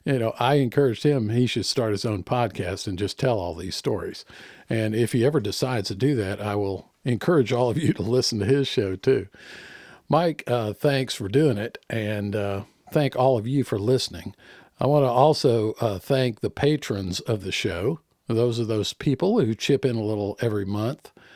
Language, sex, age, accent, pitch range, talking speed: English, male, 50-69, American, 100-135 Hz, 200 wpm